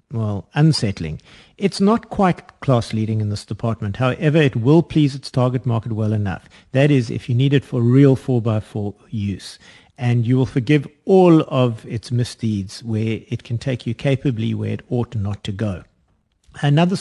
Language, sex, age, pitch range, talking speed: English, male, 50-69, 115-155 Hz, 180 wpm